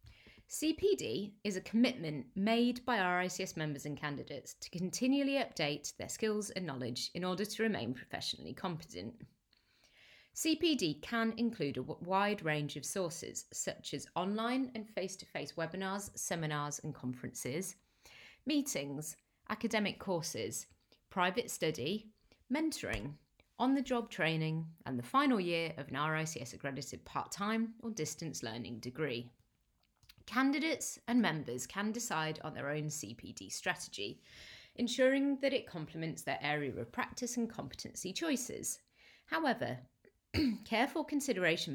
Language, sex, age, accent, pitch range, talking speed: English, female, 30-49, British, 150-240 Hz, 120 wpm